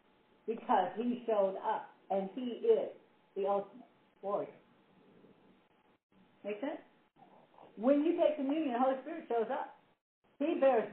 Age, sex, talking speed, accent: 50-69, female, 125 wpm, American